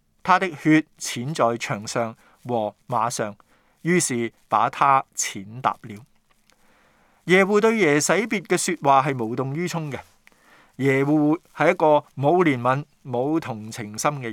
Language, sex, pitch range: Chinese, male, 120-175 Hz